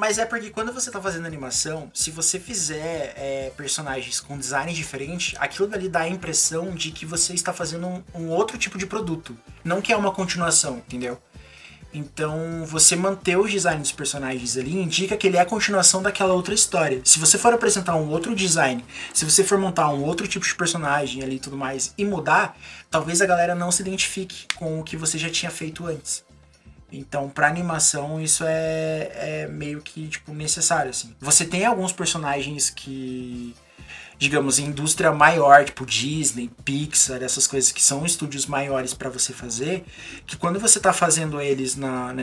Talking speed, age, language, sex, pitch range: 185 wpm, 20-39, Portuguese, male, 140-180 Hz